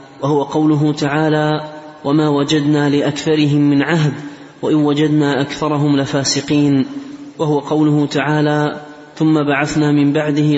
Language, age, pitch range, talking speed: Arabic, 30-49, 145-155 Hz, 110 wpm